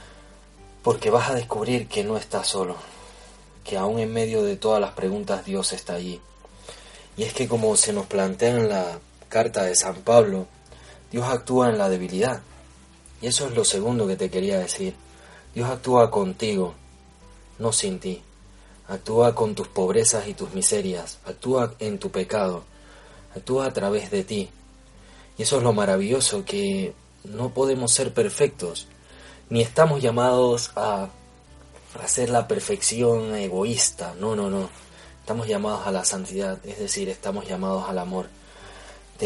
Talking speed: 155 wpm